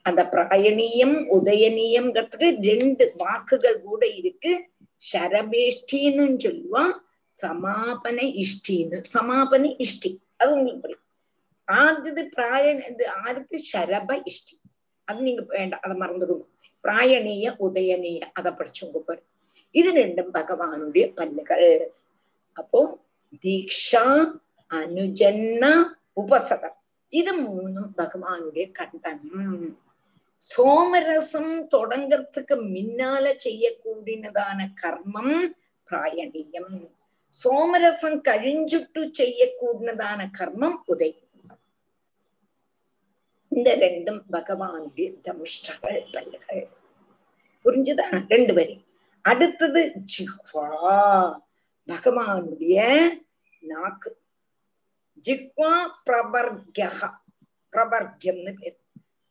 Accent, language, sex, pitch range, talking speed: native, Tamil, female, 195-320 Hz, 60 wpm